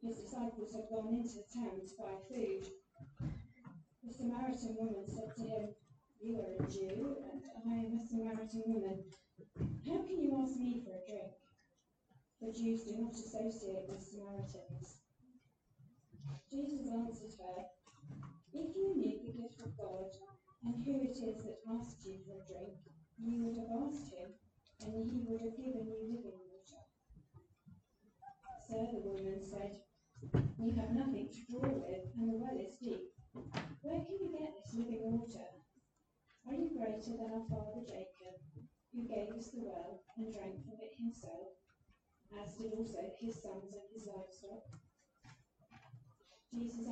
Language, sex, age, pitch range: English, female, 30-49, 195-235 Hz